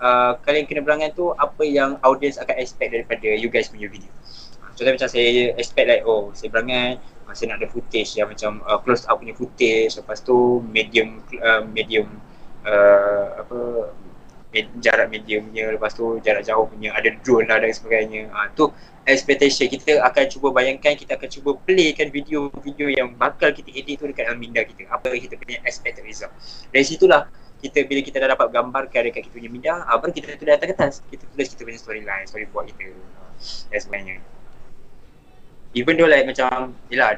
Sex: male